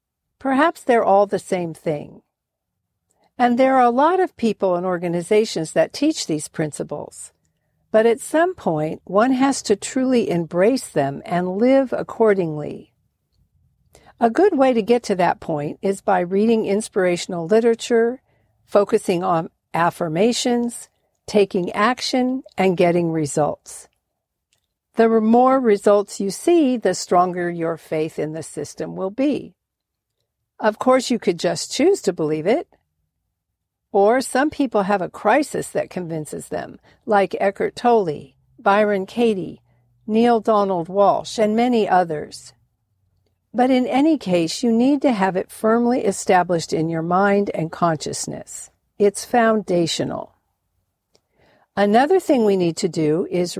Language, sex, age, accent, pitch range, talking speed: English, female, 60-79, American, 170-240 Hz, 135 wpm